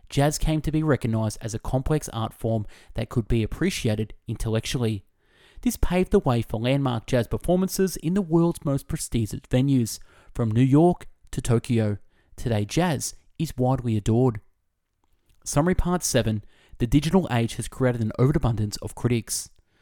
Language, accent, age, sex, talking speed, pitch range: English, Australian, 20-39, male, 155 wpm, 110-155 Hz